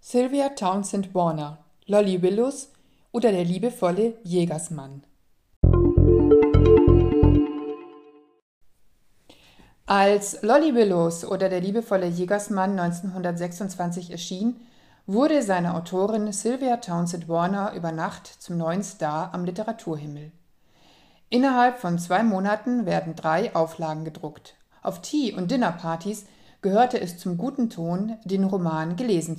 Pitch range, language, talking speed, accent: 170-215 Hz, German, 105 wpm, German